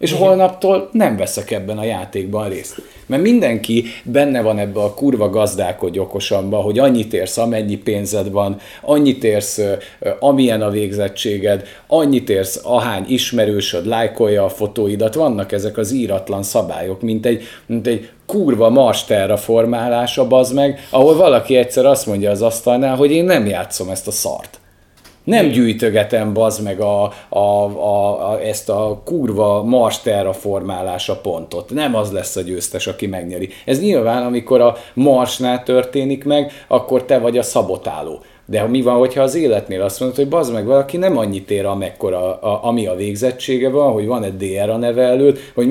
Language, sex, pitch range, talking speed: Hungarian, male, 100-130 Hz, 165 wpm